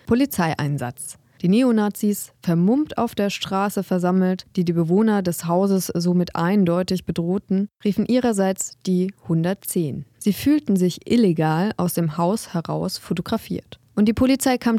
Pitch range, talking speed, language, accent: 170-210 Hz, 135 wpm, German, German